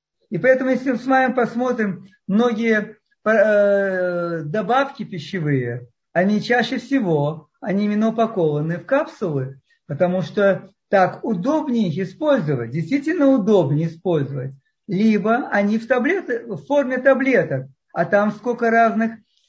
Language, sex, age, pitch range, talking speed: Russian, male, 50-69, 180-240 Hz, 115 wpm